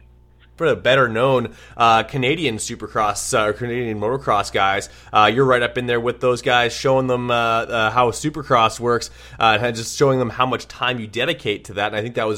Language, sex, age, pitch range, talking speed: English, male, 20-39, 110-130 Hz, 215 wpm